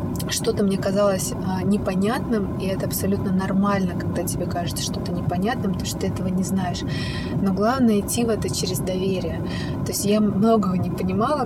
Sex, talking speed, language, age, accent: female, 170 wpm, Russian, 20-39, native